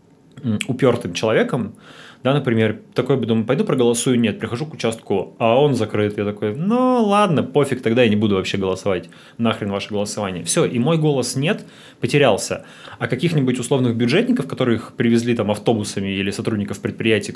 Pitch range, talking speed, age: 105-135 Hz, 165 wpm, 20-39